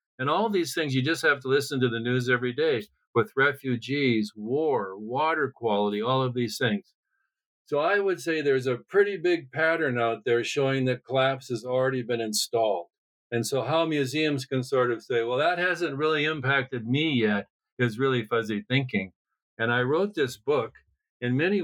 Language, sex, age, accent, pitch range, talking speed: English, male, 50-69, American, 120-150 Hz, 185 wpm